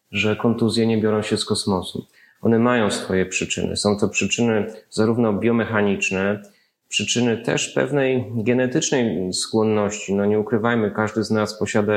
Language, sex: Polish, male